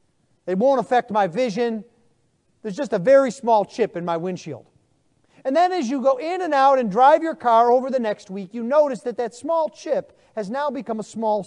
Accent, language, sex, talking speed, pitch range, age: American, English, male, 215 wpm, 205-275 Hz, 40-59